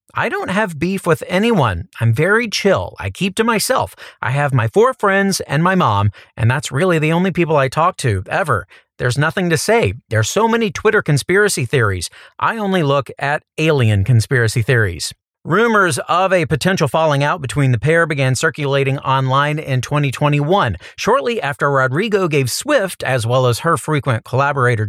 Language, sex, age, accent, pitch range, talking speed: English, male, 40-59, American, 130-175 Hz, 175 wpm